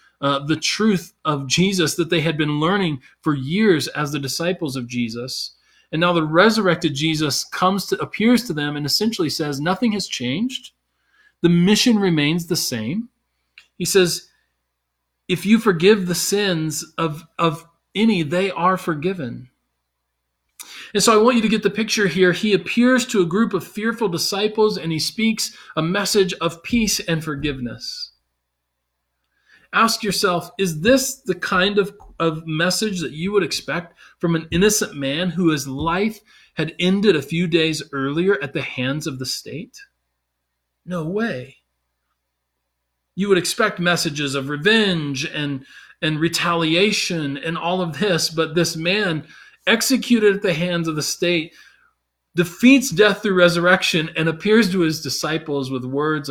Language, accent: English, American